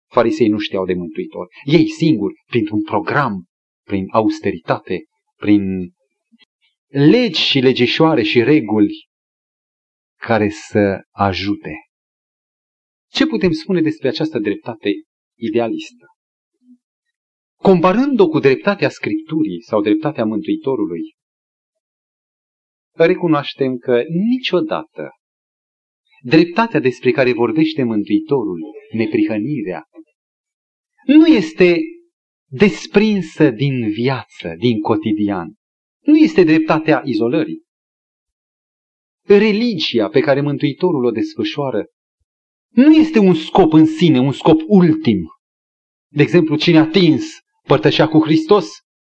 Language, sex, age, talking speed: Romanian, male, 40-59, 95 wpm